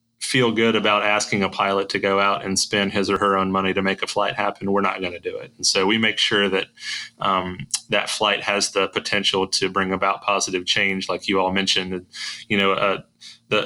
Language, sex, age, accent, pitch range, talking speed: English, male, 30-49, American, 95-105 Hz, 230 wpm